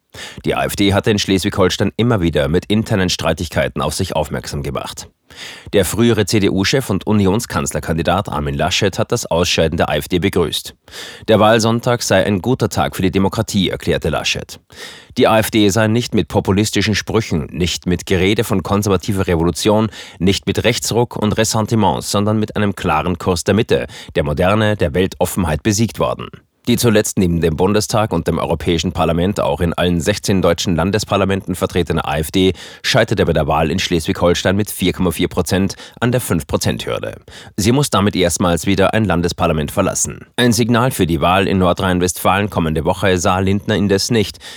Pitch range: 90-105 Hz